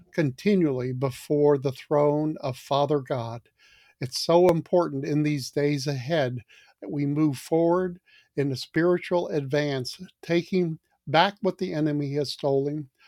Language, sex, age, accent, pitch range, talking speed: English, male, 50-69, American, 135-155 Hz, 135 wpm